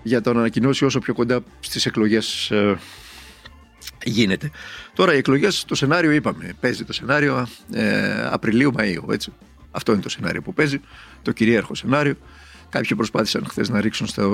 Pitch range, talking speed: 100-125 Hz, 160 wpm